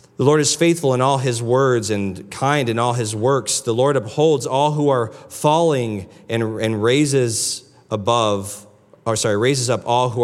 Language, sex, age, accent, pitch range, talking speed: English, male, 40-59, American, 110-135 Hz, 180 wpm